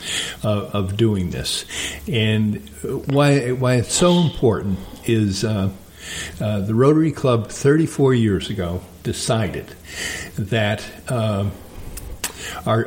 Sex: male